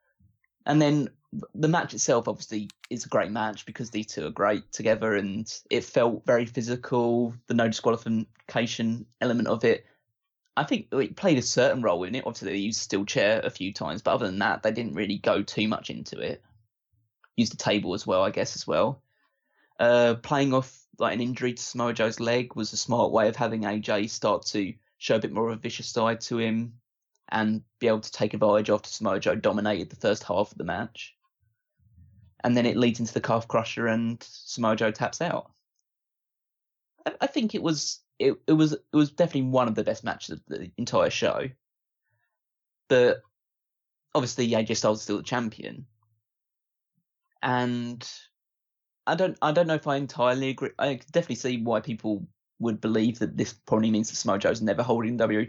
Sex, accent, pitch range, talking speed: male, British, 110-130 Hz, 195 wpm